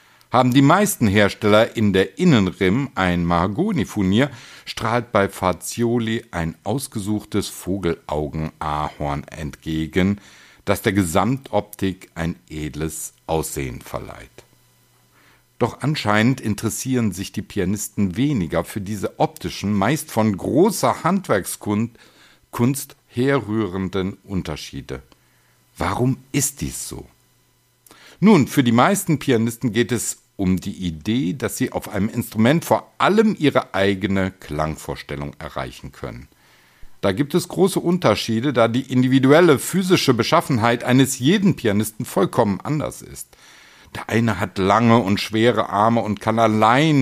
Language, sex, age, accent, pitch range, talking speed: German, male, 60-79, German, 100-130 Hz, 115 wpm